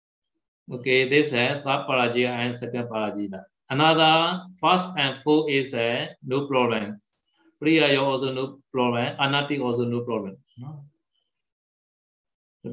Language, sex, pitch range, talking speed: Vietnamese, male, 120-145 Hz, 125 wpm